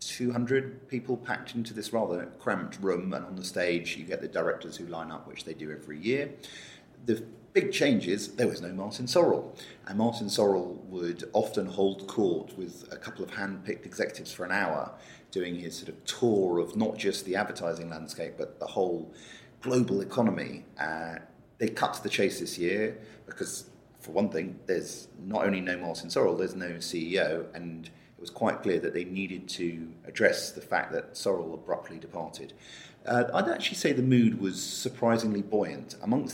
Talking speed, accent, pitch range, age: 180 wpm, British, 85-110 Hz, 40-59